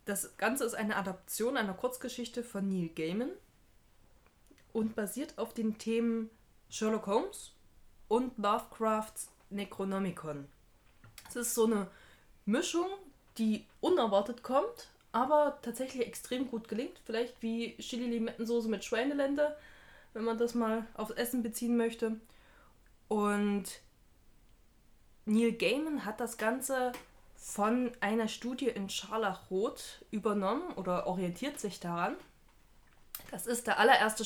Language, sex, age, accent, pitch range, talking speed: German, female, 20-39, German, 195-240 Hz, 115 wpm